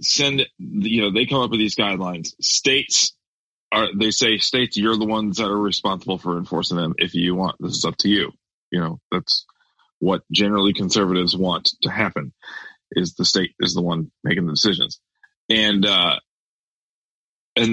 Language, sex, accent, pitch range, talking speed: English, male, American, 100-125 Hz, 175 wpm